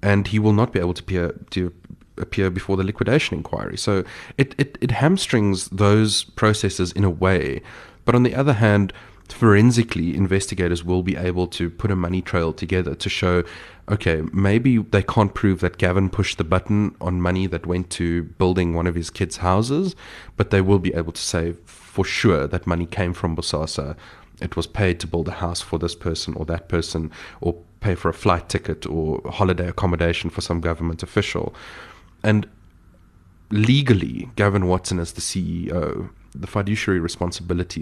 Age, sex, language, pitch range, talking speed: 30-49, male, English, 85-105 Hz, 180 wpm